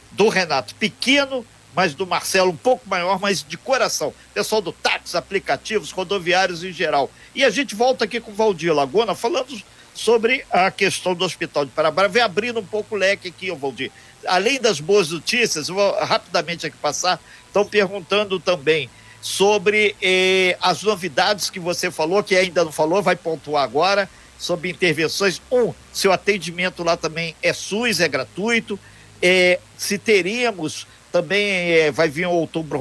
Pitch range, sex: 165-210 Hz, male